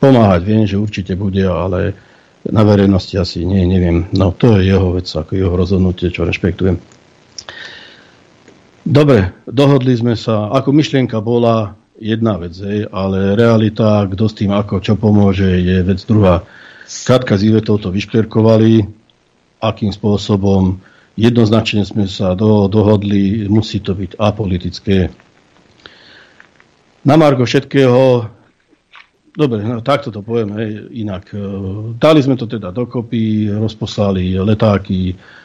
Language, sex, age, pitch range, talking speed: Slovak, male, 60-79, 95-115 Hz, 125 wpm